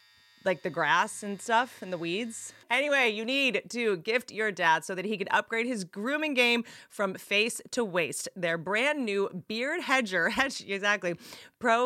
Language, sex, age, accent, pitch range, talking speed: English, female, 30-49, American, 170-235 Hz, 170 wpm